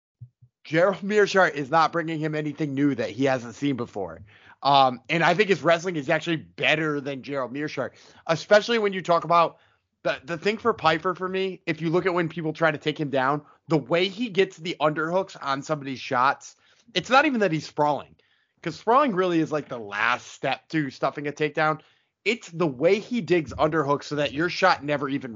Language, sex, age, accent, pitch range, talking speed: English, male, 30-49, American, 135-180 Hz, 205 wpm